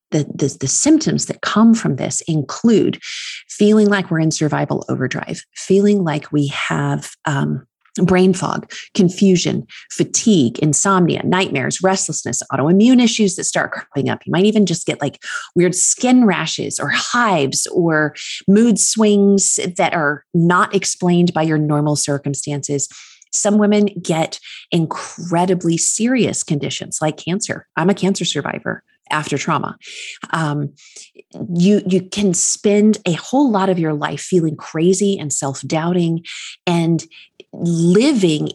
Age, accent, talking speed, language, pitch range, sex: 30-49, American, 135 wpm, English, 155-200 Hz, female